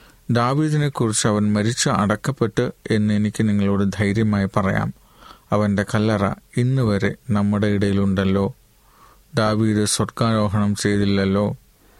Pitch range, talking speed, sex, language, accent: 100-120 Hz, 80 wpm, male, Malayalam, native